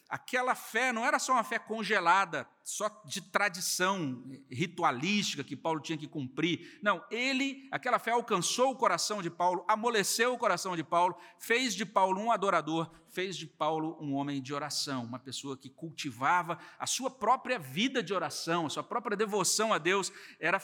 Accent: Brazilian